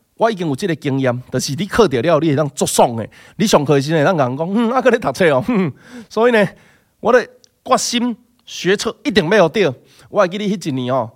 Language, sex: Chinese, male